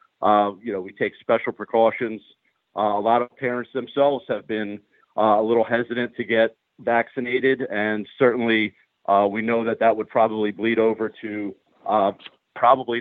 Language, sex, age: English, male, 50-69